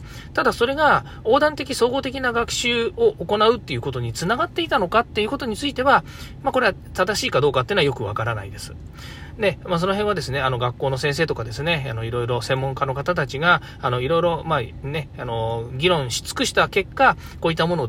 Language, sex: Japanese, male